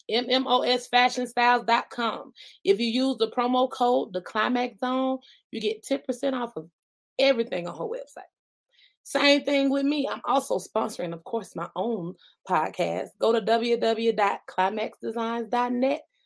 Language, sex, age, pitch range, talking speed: English, female, 20-39, 215-275 Hz, 130 wpm